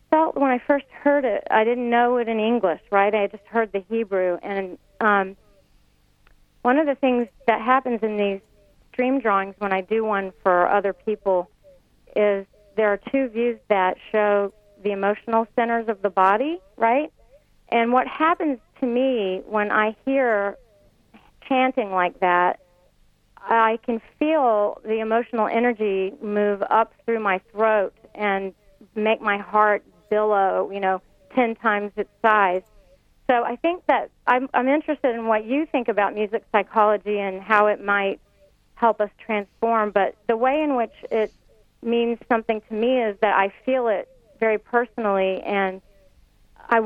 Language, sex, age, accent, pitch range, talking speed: English, female, 40-59, American, 200-235 Hz, 160 wpm